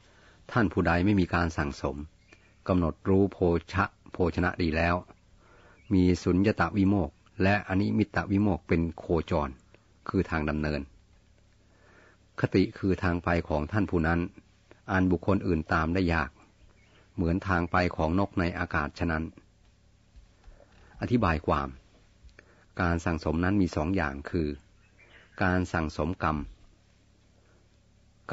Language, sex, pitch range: Thai, male, 85-100 Hz